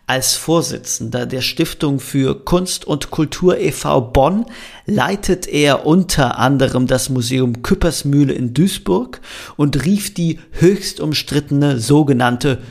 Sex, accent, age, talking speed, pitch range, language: male, German, 40-59, 120 wpm, 125-155 Hz, German